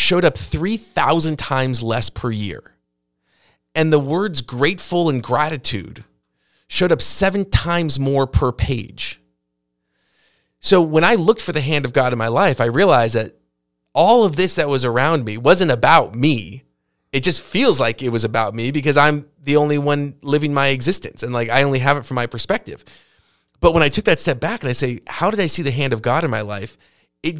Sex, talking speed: male, 200 wpm